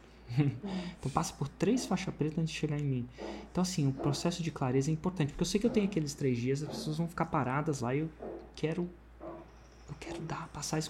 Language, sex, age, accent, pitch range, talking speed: Portuguese, male, 20-39, Brazilian, 125-160 Hz, 230 wpm